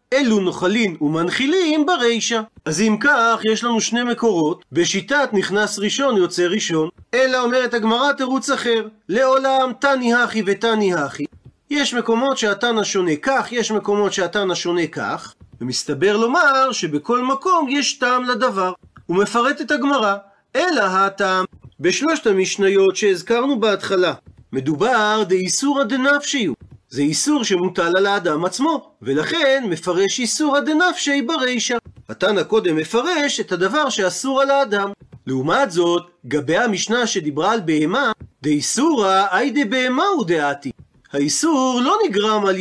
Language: Hebrew